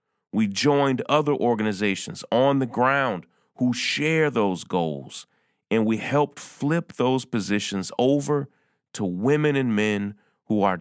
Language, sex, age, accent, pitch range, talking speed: English, male, 30-49, American, 100-135 Hz, 135 wpm